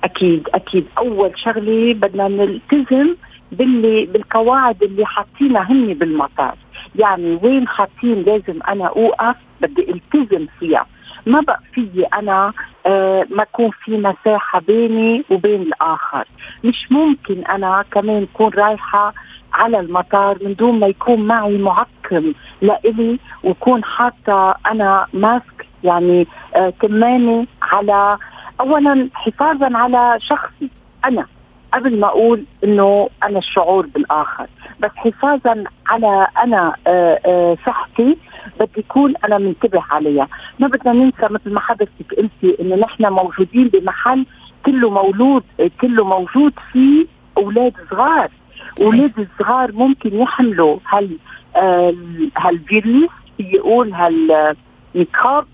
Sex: female